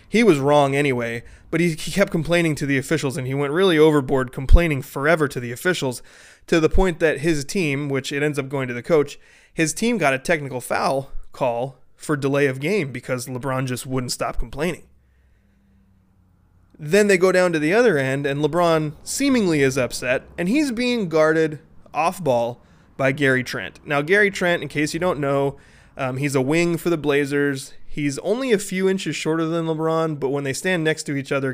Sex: male